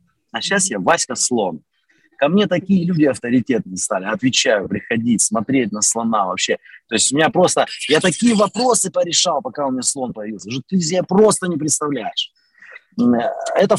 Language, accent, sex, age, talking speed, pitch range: Russian, native, male, 30-49, 160 wpm, 140-210 Hz